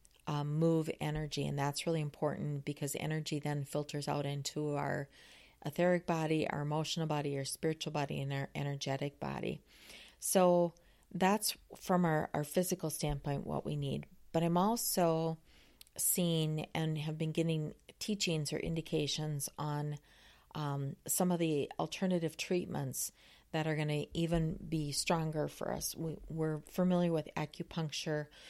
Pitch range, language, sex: 145-170 Hz, English, female